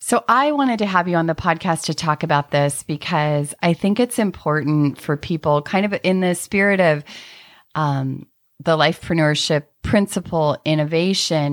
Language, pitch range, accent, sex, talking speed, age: English, 155-195 Hz, American, female, 160 wpm, 30-49